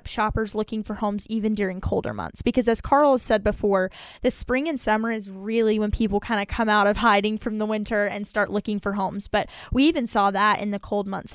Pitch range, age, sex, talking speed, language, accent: 205-230 Hz, 10-29, female, 240 wpm, English, American